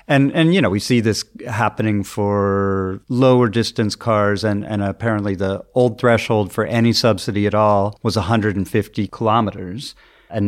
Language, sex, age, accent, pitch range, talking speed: English, male, 40-59, American, 95-115 Hz, 155 wpm